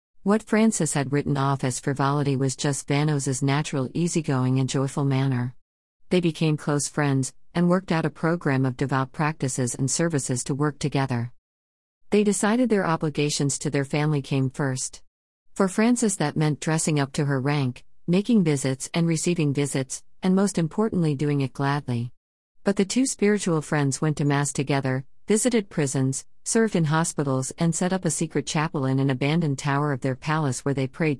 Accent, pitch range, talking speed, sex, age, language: American, 135-160 Hz, 185 wpm, female, 50-69, Malayalam